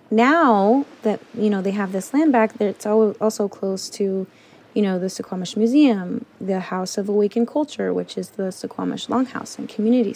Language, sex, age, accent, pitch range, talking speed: English, female, 20-39, American, 190-230 Hz, 175 wpm